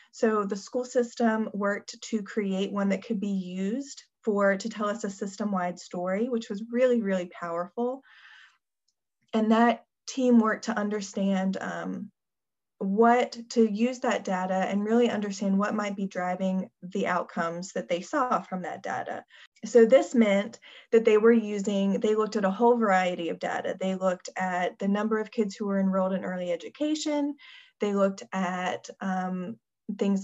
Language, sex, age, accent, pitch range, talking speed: English, female, 20-39, American, 195-235 Hz, 165 wpm